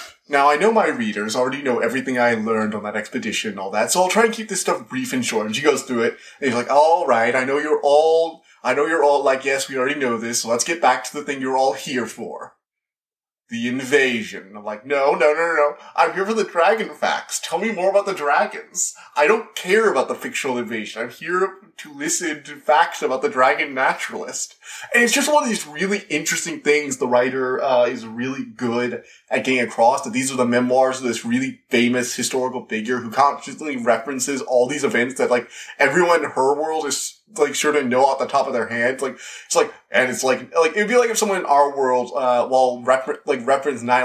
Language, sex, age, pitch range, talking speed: English, male, 20-39, 125-165 Hz, 235 wpm